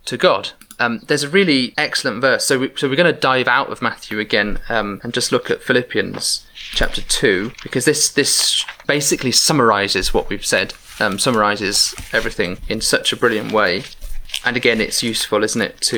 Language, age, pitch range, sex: English, 30-49, 120-150 Hz, male